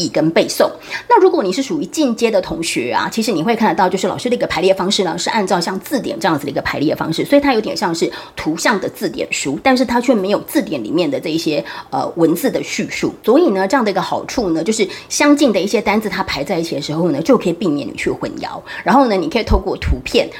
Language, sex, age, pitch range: Chinese, female, 30-49, 190-275 Hz